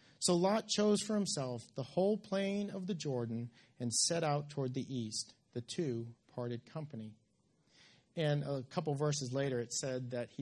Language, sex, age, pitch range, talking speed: English, male, 40-59, 120-160 Hz, 180 wpm